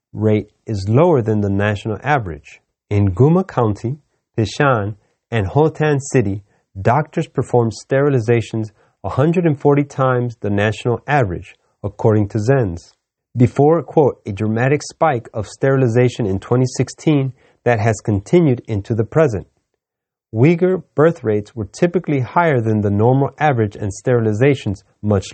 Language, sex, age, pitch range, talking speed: English, male, 30-49, 105-145 Hz, 125 wpm